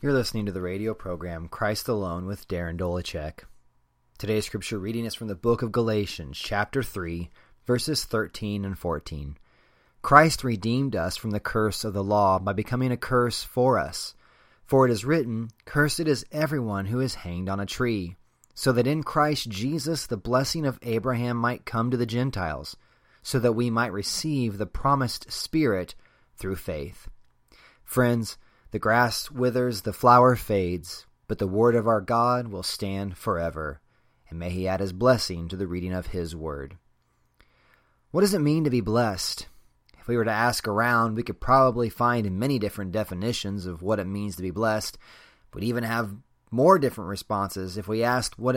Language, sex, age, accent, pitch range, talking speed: English, male, 30-49, American, 95-120 Hz, 175 wpm